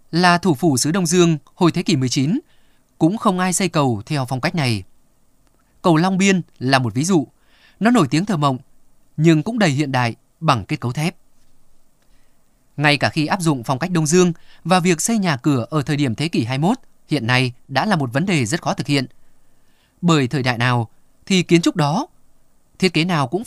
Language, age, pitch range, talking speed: Vietnamese, 20-39, 135-180 Hz, 210 wpm